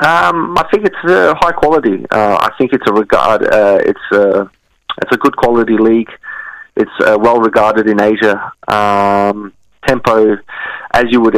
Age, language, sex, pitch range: 20-39, English, male, 100-110 Hz